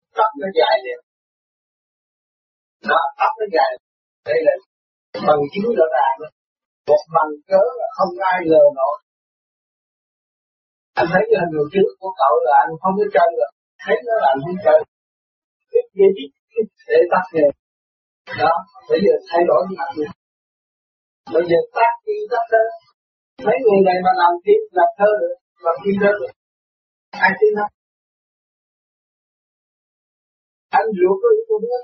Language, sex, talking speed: Vietnamese, male, 115 wpm